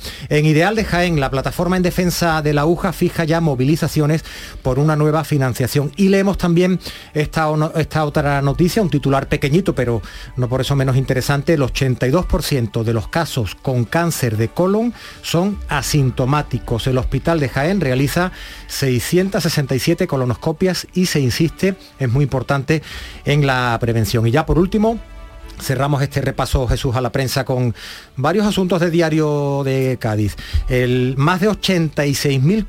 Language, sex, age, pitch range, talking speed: Spanish, male, 40-59, 130-175 Hz, 150 wpm